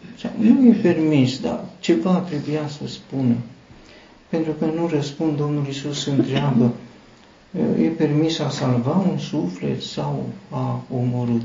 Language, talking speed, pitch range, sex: Romanian, 125 wpm, 125-165 Hz, male